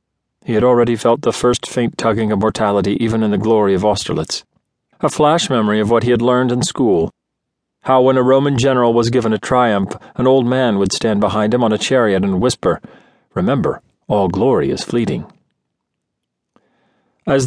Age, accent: 40-59, American